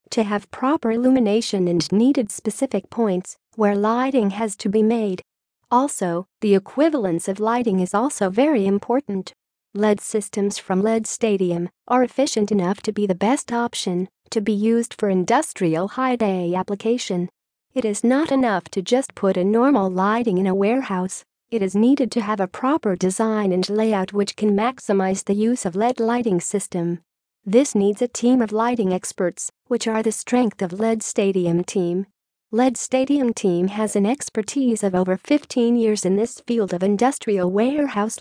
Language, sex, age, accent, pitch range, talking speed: English, female, 40-59, American, 195-235 Hz, 165 wpm